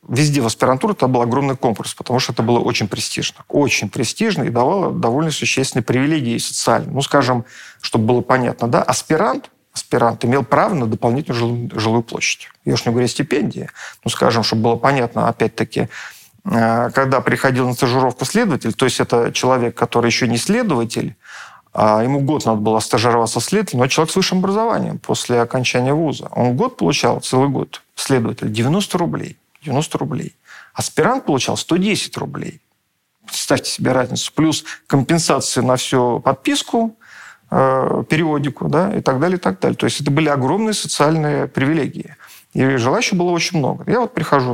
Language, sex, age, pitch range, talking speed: Russian, male, 40-59, 120-155 Hz, 165 wpm